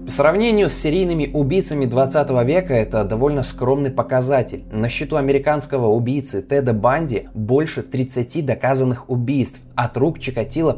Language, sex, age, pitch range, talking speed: Russian, male, 20-39, 115-145 Hz, 135 wpm